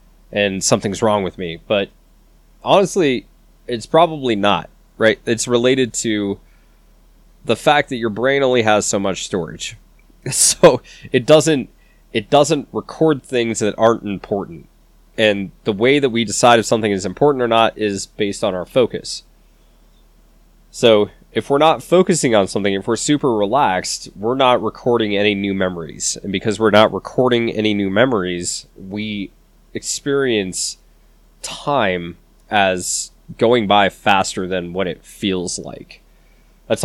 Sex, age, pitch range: male, 20-39, 100-125 Hz